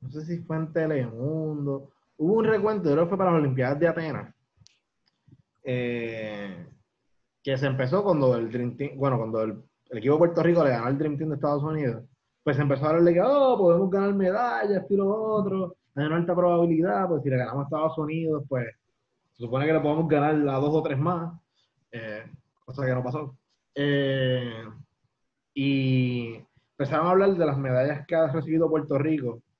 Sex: male